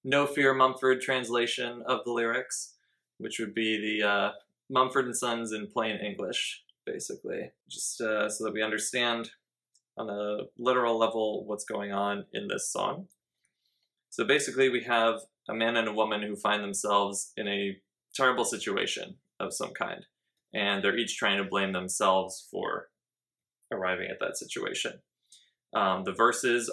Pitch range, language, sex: 100-120 Hz, English, male